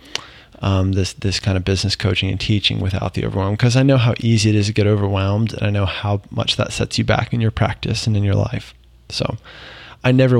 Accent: American